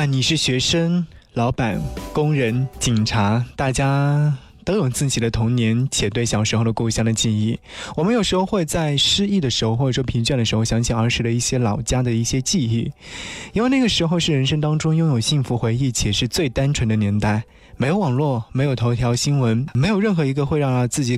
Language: Chinese